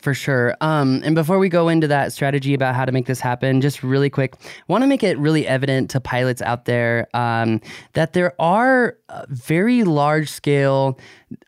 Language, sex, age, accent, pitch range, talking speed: English, male, 20-39, American, 125-145 Hz, 190 wpm